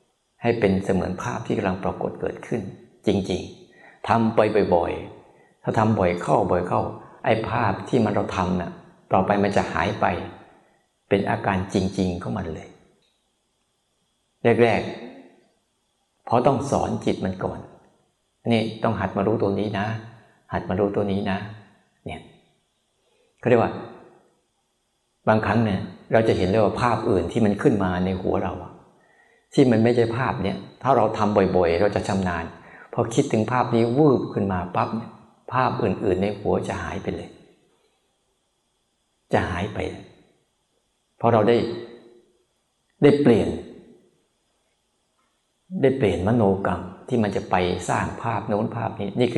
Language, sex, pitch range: Thai, male, 95-115 Hz